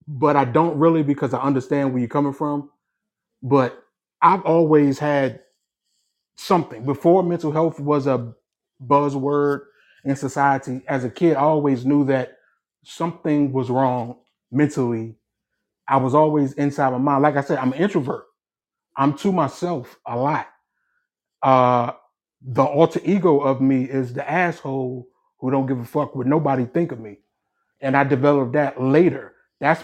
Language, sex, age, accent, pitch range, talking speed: English, male, 30-49, American, 125-150 Hz, 155 wpm